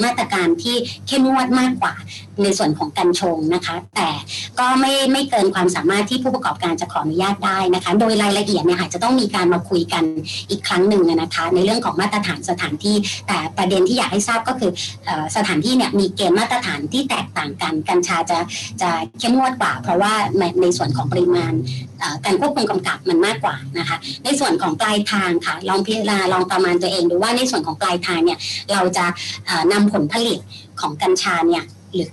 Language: Thai